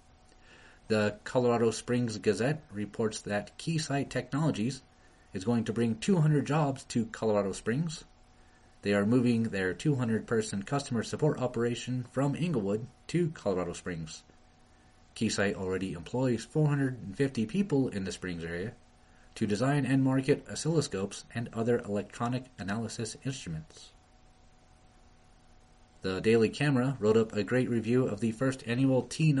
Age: 30-49